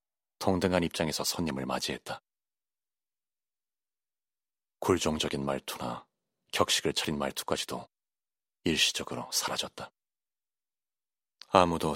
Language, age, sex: Korean, 30-49, male